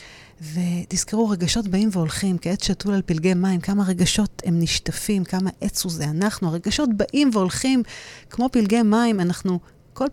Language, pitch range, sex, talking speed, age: Hebrew, 170-220 Hz, female, 155 wpm, 30-49